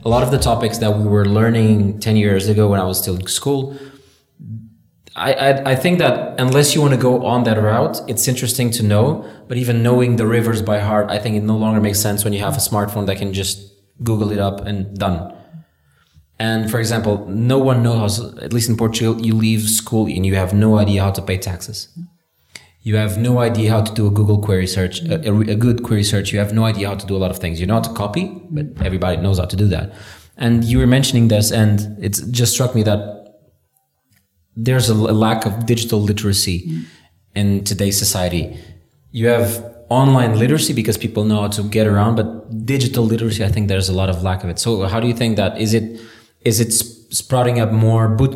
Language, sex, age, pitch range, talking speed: English, male, 20-39, 100-115 Hz, 225 wpm